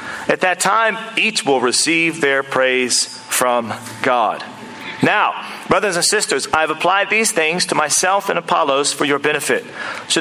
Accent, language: American, English